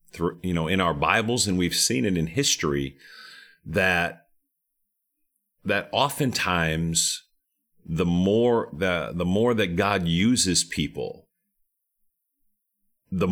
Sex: male